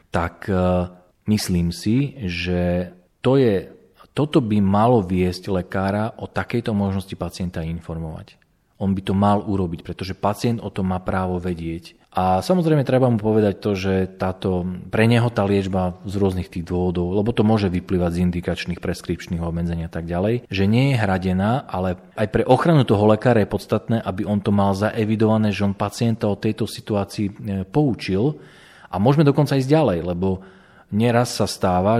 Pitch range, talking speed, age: 95-120 Hz, 165 wpm, 40-59